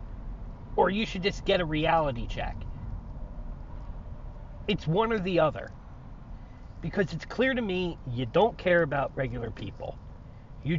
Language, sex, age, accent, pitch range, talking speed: English, male, 40-59, American, 115-170 Hz, 140 wpm